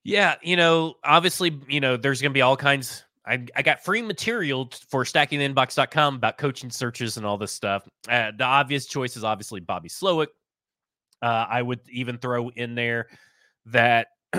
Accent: American